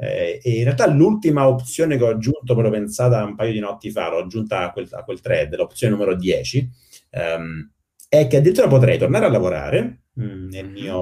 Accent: native